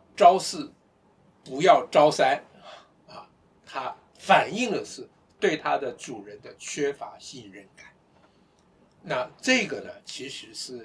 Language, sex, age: Chinese, male, 60-79